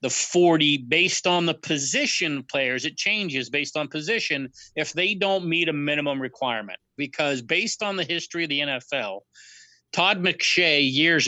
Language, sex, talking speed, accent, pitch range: English, male, 160 wpm, American, 135-170 Hz